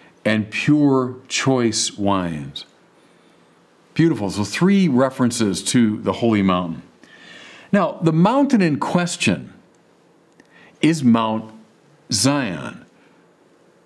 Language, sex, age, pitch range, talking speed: English, male, 50-69, 115-150 Hz, 80 wpm